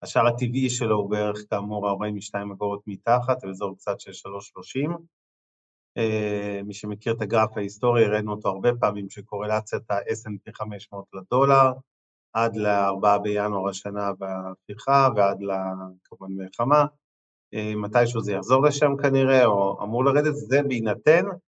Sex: male